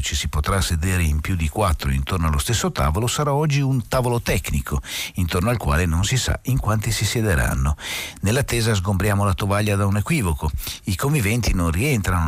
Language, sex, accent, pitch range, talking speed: Italian, male, native, 80-115 Hz, 185 wpm